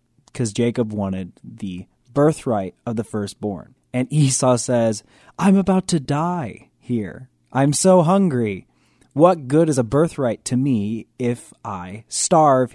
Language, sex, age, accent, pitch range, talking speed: English, male, 20-39, American, 105-140 Hz, 135 wpm